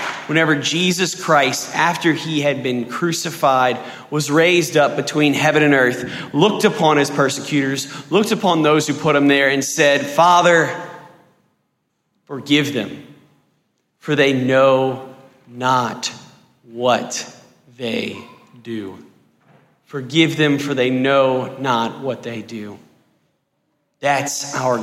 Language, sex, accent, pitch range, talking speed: English, male, American, 130-170 Hz, 120 wpm